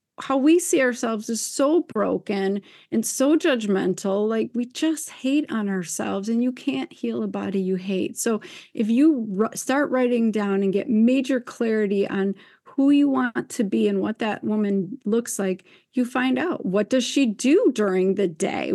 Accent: American